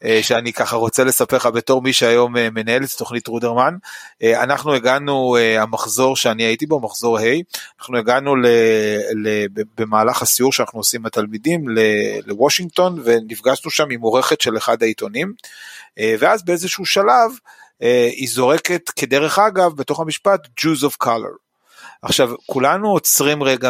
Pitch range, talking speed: 120-165 Hz, 140 wpm